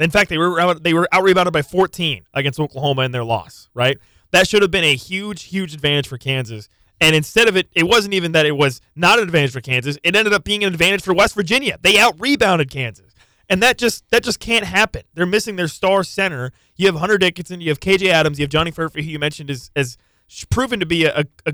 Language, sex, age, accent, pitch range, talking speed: English, male, 20-39, American, 130-170 Hz, 240 wpm